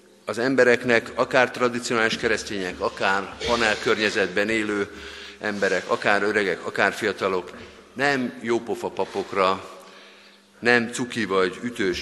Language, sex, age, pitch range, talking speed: Hungarian, male, 50-69, 100-130 Hz, 100 wpm